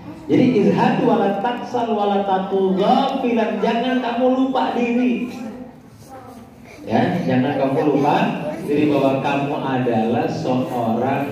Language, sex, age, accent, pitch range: Indonesian, male, 40-59, native, 115-185 Hz